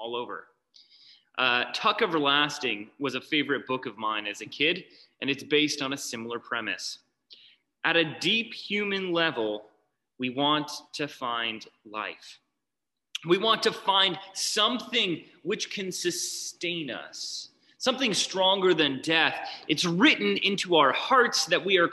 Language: English